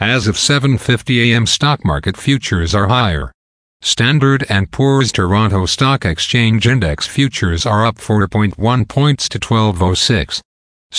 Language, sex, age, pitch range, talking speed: English, male, 50-69, 100-125 Hz, 120 wpm